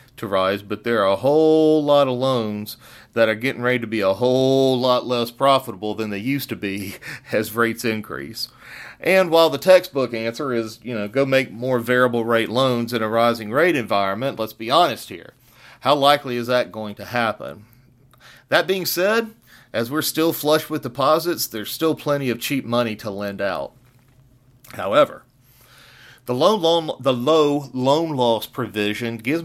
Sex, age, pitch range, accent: male, 40-59, 115-140 Hz, American